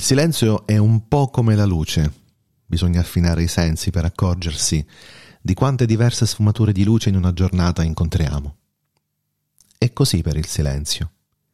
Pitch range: 75-110 Hz